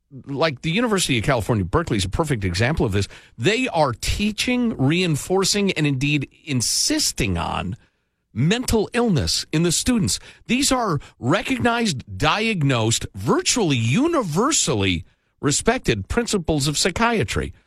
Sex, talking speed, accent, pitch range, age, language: male, 120 wpm, American, 105-165 Hz, 50-69, English